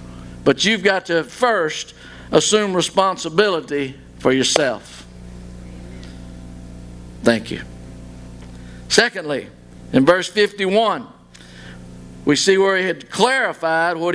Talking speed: 95 wpm